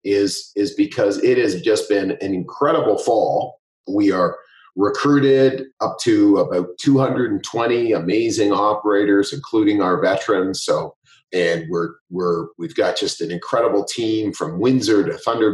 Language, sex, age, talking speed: English, male, 40-59, 140 wpm